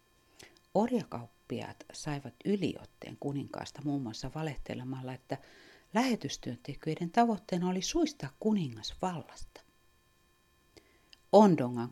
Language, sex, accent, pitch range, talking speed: Finnish, female, native, 125-175 Hz, 75 wpm